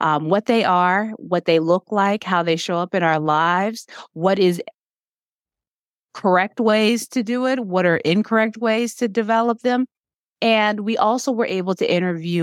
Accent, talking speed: American, 175 wpm